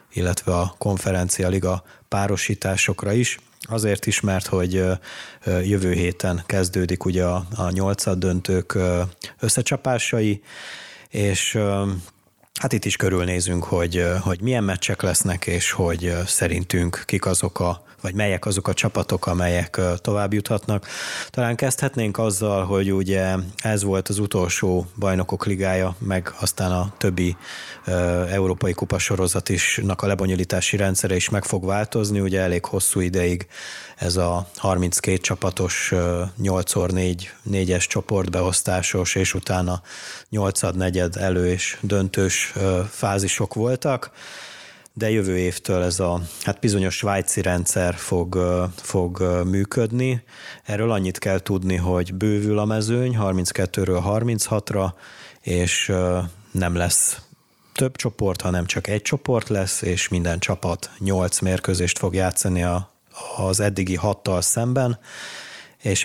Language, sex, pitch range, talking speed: Hungarian, male, 90-105 Hz, 115 wpm